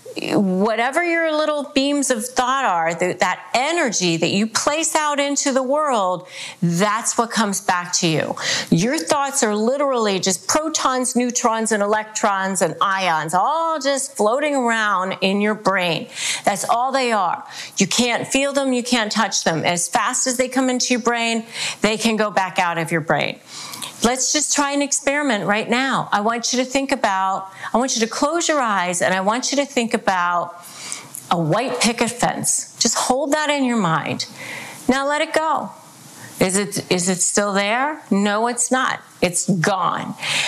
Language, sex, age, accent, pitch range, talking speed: English, female, 40-59, American, 200-275 Hz, 180 wpm